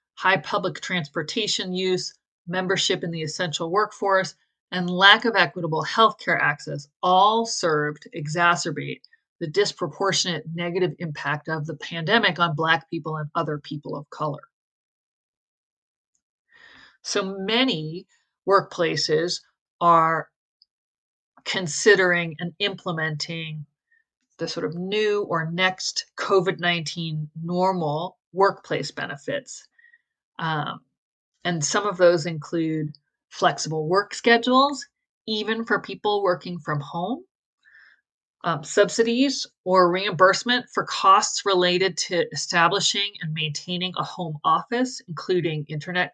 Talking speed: 105 wpm